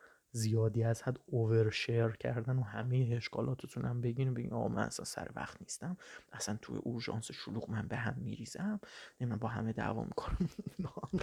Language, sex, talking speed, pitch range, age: Persian, male, 170 wpm, 125-180 Hz, 30-49